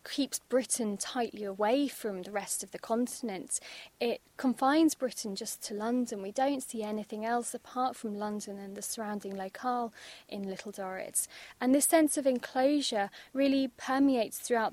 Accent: British